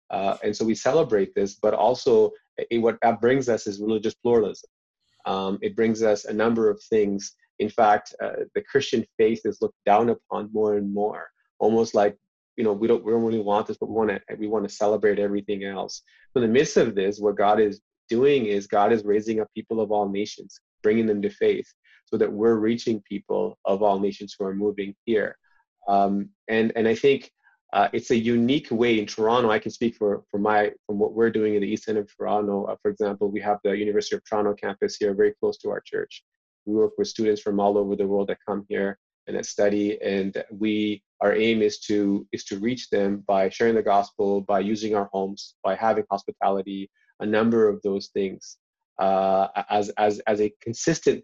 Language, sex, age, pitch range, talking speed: English, male, 30-49, 100-115 Hz, 215 wpm